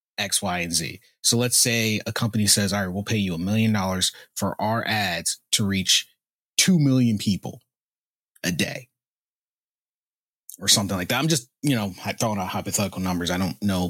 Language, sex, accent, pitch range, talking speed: English, male, American, 95-125 Hz, 190 wpm